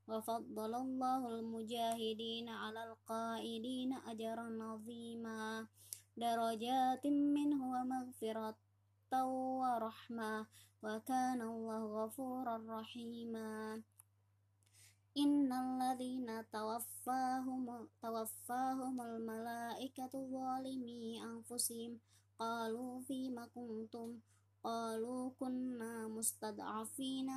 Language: Indonesian